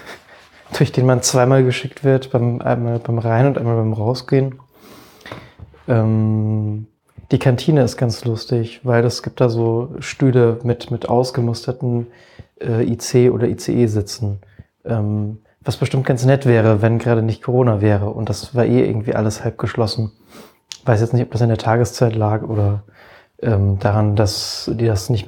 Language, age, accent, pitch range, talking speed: German, 20-39, German, 110-125 Hz, 160 wpm